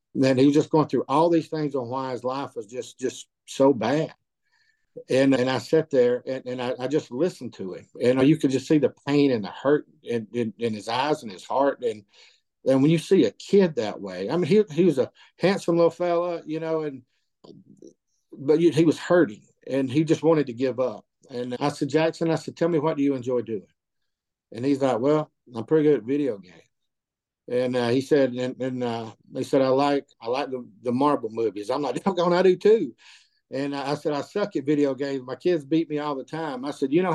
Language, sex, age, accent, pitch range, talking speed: English, male, 50-69, American, 130-165 Hz, 240 wpm